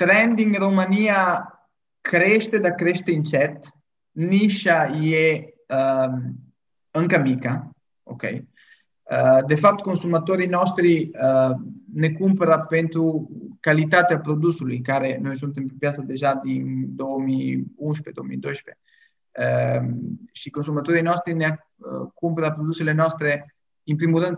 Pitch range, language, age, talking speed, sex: 135-160 Hz, Romanian, 20-39, 105 wpm, male